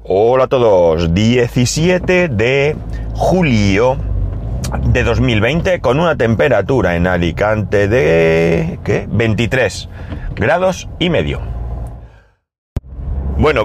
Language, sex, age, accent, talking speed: Spanish, male, 30-49, Spanish, 85 wpm